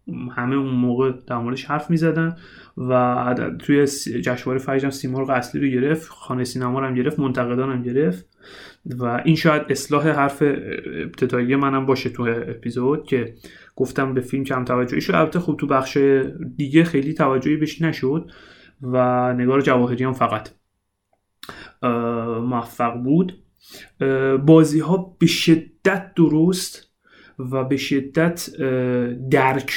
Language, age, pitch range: Persian, 30-49, 125-155 Hz